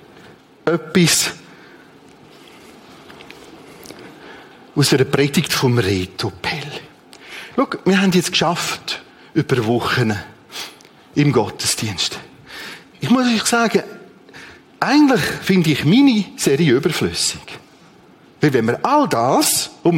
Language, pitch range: German, 125-195 Hz